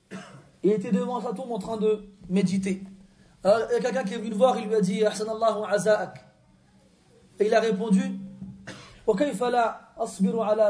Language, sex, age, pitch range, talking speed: French, male, 30-49, 190-260 Hz, 185 wpm